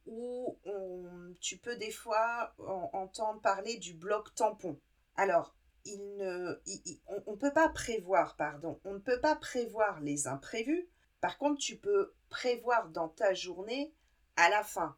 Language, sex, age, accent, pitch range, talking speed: French, female, 50-69, French, 180-260 Hz, 160 wpm